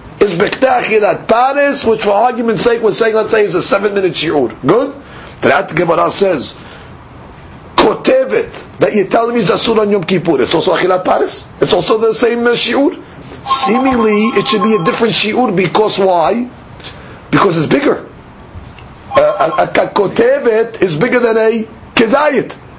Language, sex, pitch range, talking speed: English, male, 190-245 Hz, 160 wpm